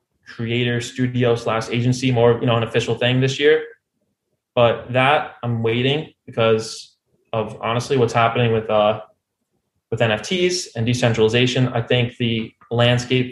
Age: 20-39